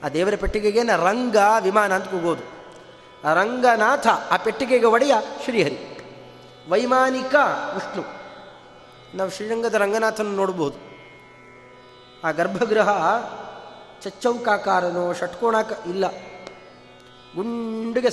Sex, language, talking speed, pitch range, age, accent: male, Kannada, 80 wpm, 185-245 Hz, 30-49, native